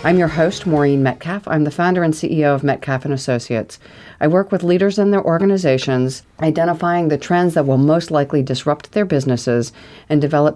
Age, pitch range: 40-59, 140-170 Hz